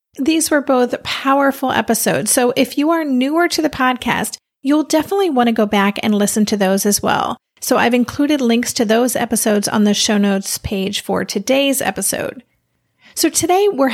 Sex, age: female, 30-49